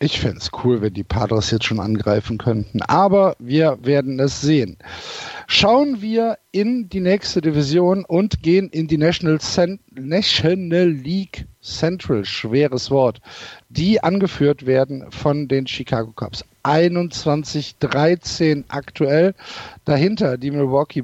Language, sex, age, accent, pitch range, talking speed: German, male, 50-69, German, 135-180 Hz, 125 wpm